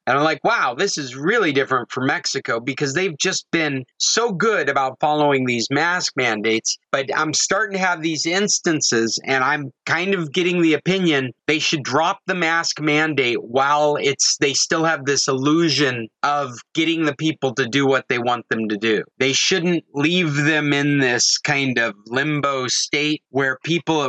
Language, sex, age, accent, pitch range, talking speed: English, male, 30-49, American, 140-175 Hz, 180 wpm